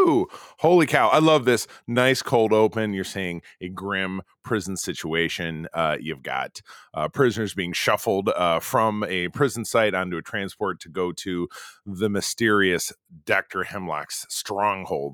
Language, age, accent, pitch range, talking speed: English, 30-49, American, 90-115 Hz, 145 wpm